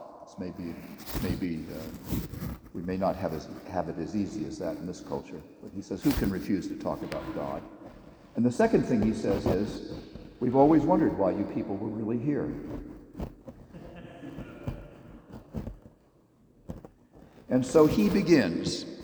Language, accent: English, American